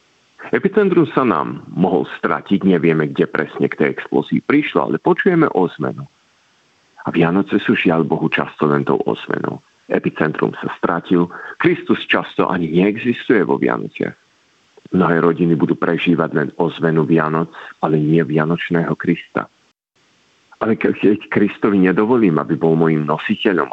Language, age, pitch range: Slovak, 50-69, 80-95 Hz